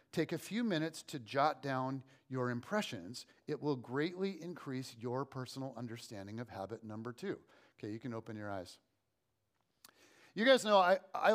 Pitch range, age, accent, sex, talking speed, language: 145-215 Hz, 40-59, American, male, 160 wpm, English